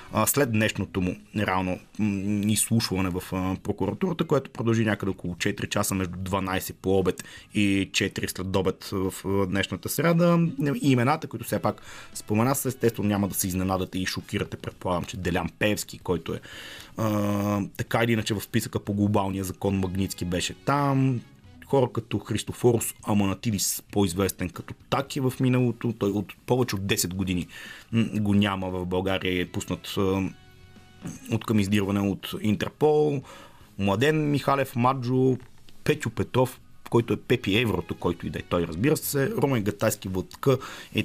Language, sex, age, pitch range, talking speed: Bulgarian, male, 30-49, 100-130 Hz, 150 wpm